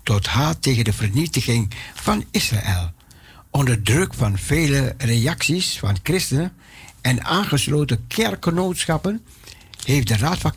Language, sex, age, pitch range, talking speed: Dutch, male, 60-79, 110-150 Hz, 120 wpm